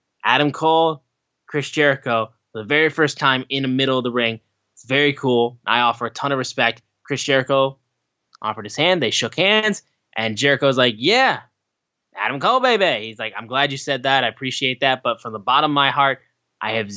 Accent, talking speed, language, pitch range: American, 205 wpm, English, 120-160 Hz